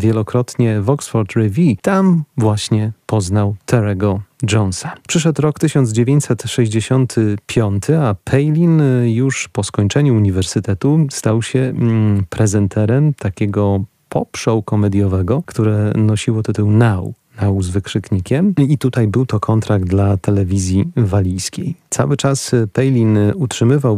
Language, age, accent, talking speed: Polish, 30-49, native, 110 wpm